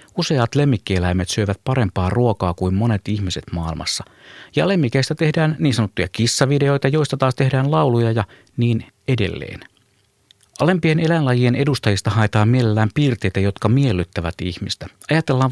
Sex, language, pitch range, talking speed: male, Finnish, 100-135 Hz, 125 wpm